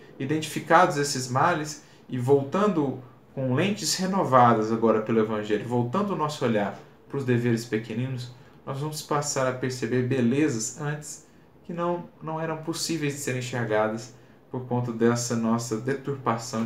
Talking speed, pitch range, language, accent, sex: 140 wpm, 115-140 Hz, Portuguese, Brazilian, male